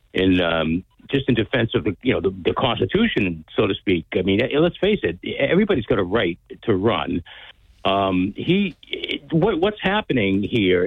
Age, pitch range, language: 60-79, 105-145 Hz, English